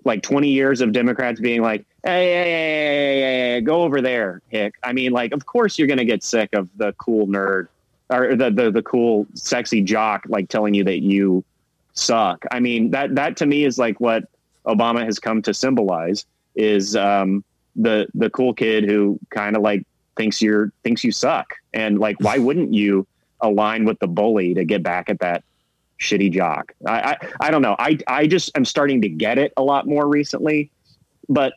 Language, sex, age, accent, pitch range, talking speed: English, male, 30-49, American, 100-130 Hz, 205 wpm